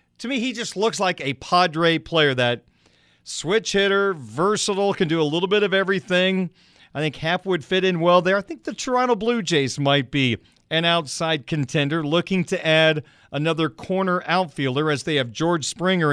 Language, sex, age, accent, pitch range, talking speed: English, male, 40-59, American, 145-185 Hz, 185 wpm